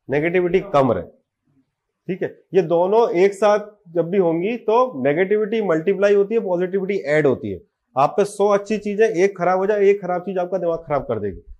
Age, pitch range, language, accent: 30-49, 160-195 Hz, Hindi, native